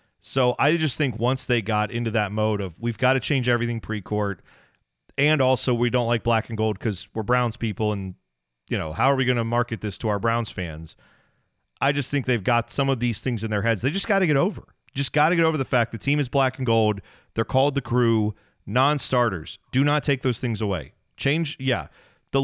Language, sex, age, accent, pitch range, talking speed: English, male, 30-49, American, 115-175 Hz, 235 wpm